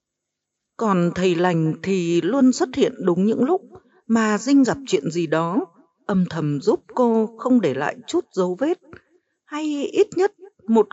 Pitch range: 185-250 Hz